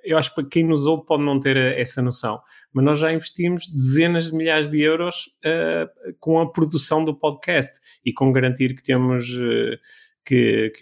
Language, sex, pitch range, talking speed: Portuguese, male, 125-150 Hz, 170 wpm